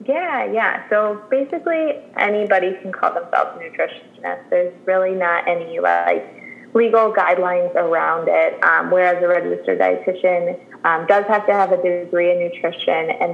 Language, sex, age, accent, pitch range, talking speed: English, female, 20-39, American, 170-195 Hz, 155 wpm